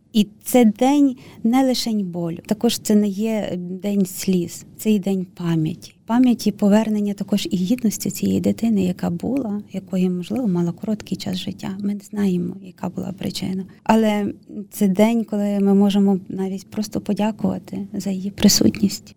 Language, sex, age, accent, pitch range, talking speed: Ukrainian, female, 30-49, native, 190-220 Hz, 155 wpm